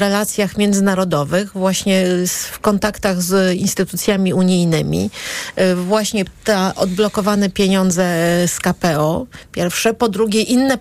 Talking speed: 105 wpm